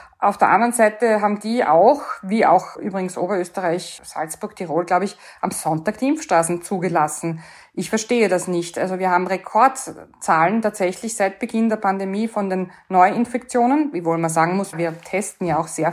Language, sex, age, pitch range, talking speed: German, female, 20-39, 180-220 Hz, 175 wpm